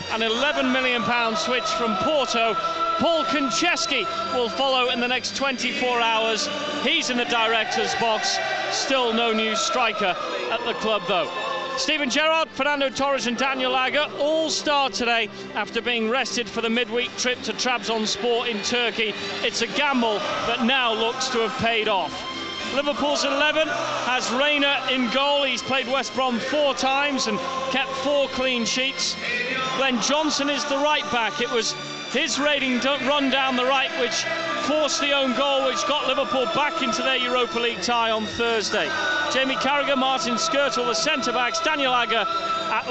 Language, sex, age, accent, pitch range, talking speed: English, male, 30-49, British, 235-290 Hz, 160 wpm